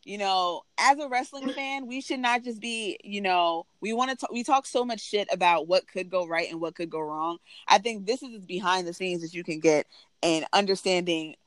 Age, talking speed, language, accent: 20-39, 230 wpm, English, American